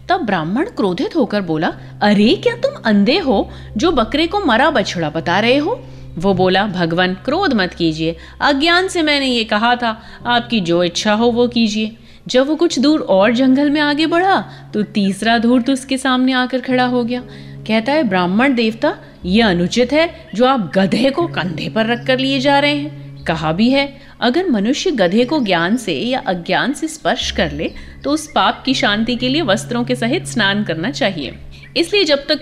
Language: Hindi